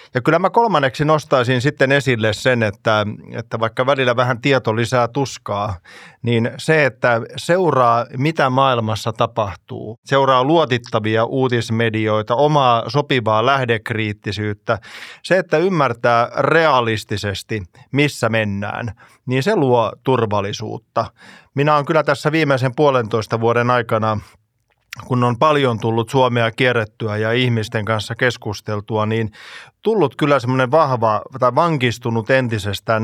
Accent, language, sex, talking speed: native, Finnish, male, 120 wpm